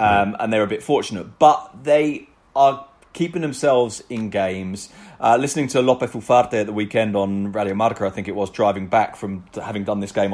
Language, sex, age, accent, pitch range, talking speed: English, male, 30-49, British, 100-130 Hz, 195 wpm